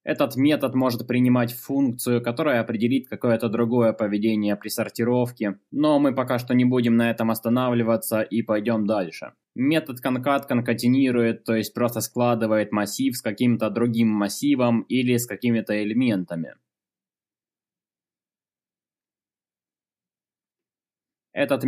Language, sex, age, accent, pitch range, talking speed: Russian, male, 20-39, native, 110-125 Hz, 115 wpm